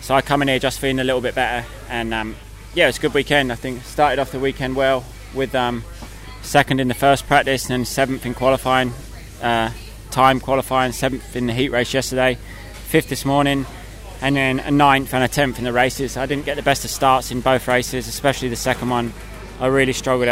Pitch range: 110-130 Hz